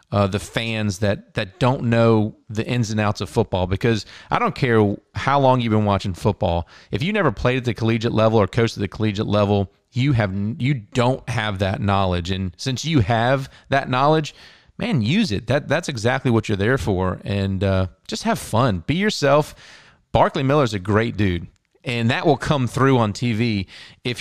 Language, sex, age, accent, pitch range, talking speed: English, male, 30-49, American, 105-125 Hz, 200 wpm